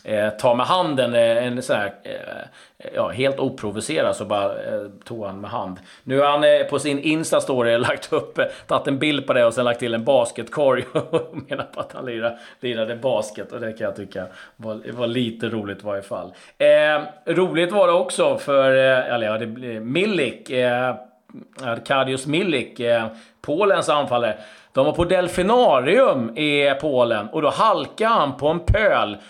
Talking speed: 180 wpm